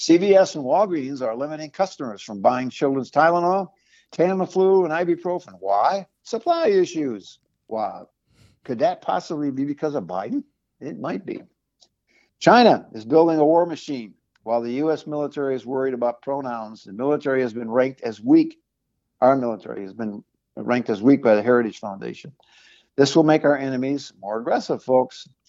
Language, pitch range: English, 125-160 Hz